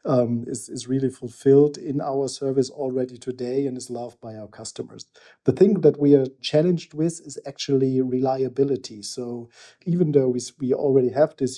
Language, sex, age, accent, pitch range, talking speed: English, male, 50-69, German, 125-135 Hz, 175 wpm